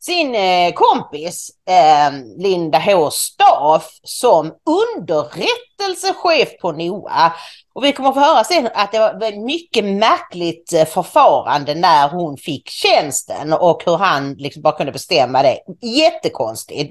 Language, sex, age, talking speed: English, female, 40-59, 115 wpm